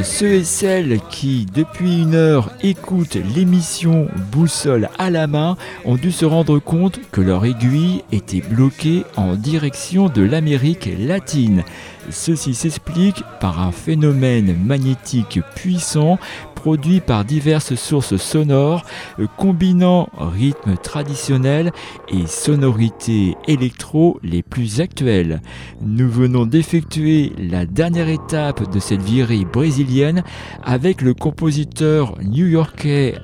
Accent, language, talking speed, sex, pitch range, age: French, French, 115 wpm, male, 105-160 Hz, 50-69